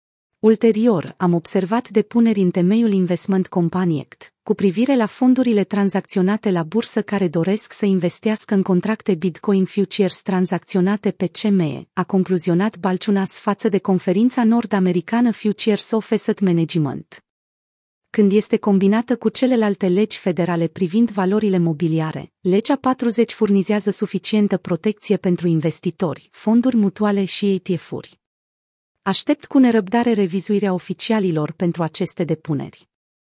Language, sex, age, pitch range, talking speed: Romanian, female, 30-49, 180-220 Hz, 120 wpm